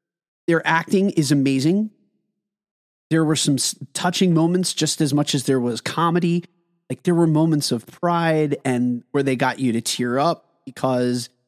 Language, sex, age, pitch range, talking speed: English, male, 30-49, 135-190 Hz, 160 wpm